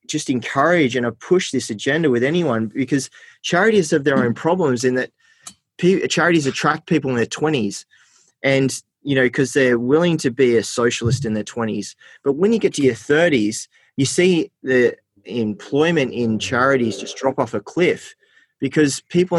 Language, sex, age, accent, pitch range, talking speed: English, male, 20-39, Australian, 115-145 Hz, 175 wpm